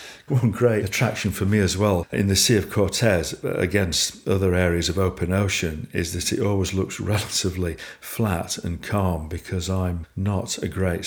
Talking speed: 175 wpm